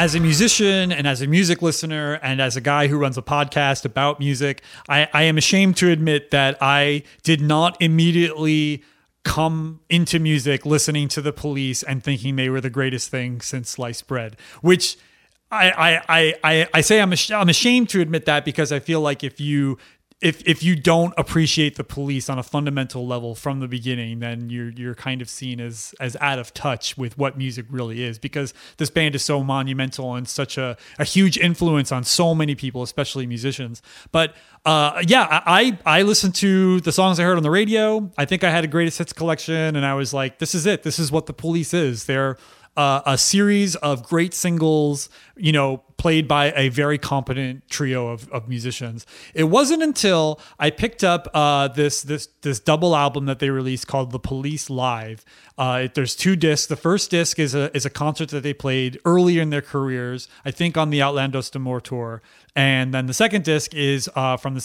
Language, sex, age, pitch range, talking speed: English, male, 30-49, 135-165 Hz, 205 wpm